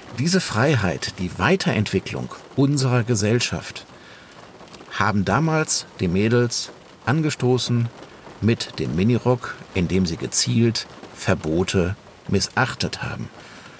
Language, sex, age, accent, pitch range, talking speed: German, male, 50-69, German, 95-130 Hz, 90 wpm